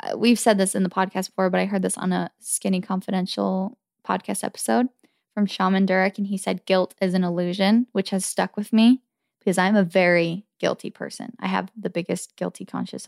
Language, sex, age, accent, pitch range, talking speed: English, female, 20-39, American, 175-210 Hz, 200 wpm